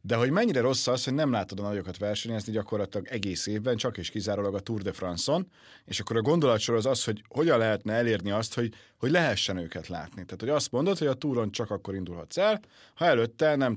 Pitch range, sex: 100-130 Hz, male